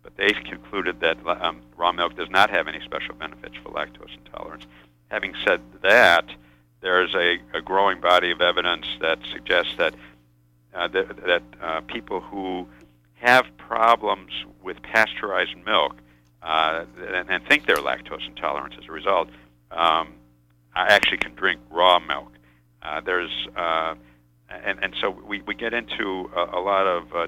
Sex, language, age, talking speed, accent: male, English, 50-69, 155 wpm, American